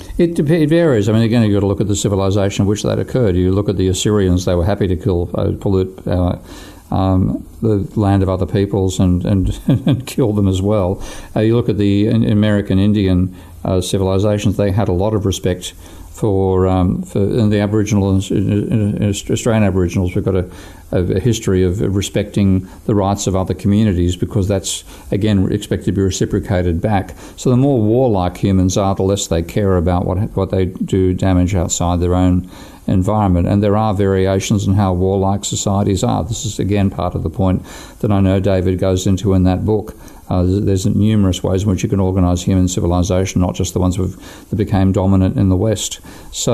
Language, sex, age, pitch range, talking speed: English, male, 50-69, 95-105 Hz, 200 wpm